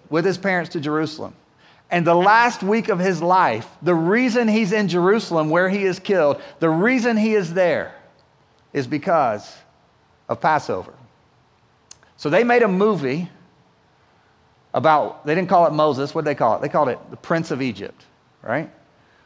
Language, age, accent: English, 40-59, American